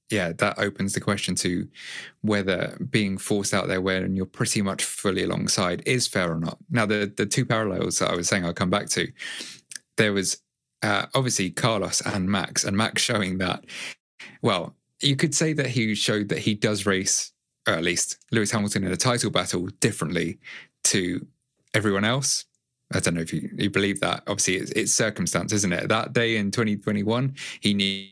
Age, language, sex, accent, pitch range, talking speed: 20-39, English, male, British, 95-115 Hz, 185 wpm